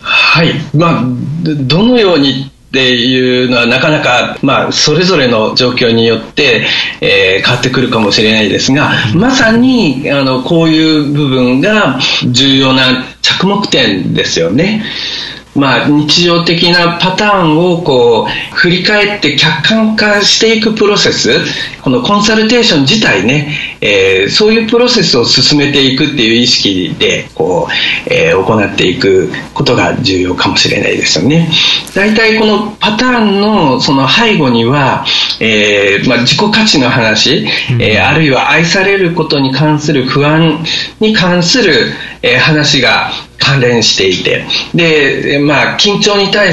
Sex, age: male, 40-59